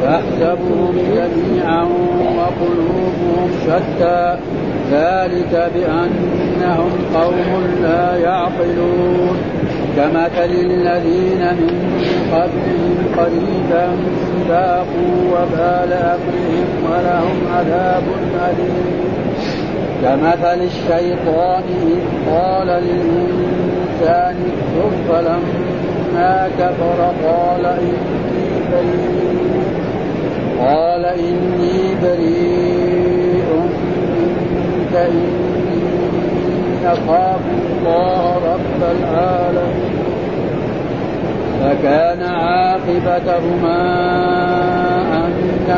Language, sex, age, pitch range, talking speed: Arabic, male, 50-69, 175-180 Hz, 55 wpm